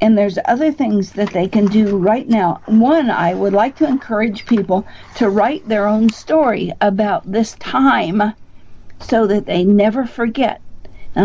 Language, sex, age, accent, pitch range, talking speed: English, female, 50-69, American, 185-240 Hz, 165 wpm